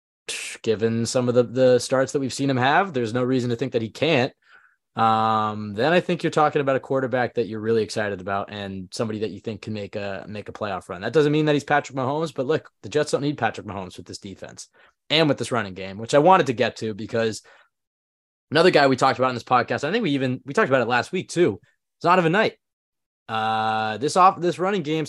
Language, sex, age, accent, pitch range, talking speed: English, male, 20-39, American, 115-140 Hz, 250 wpm